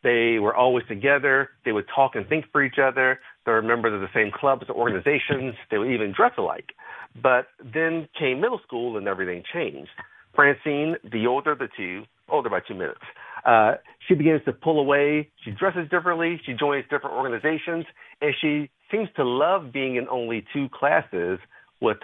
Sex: male